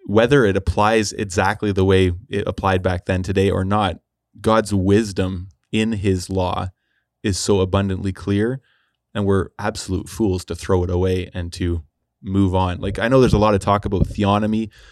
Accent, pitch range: American, 95-105 Hz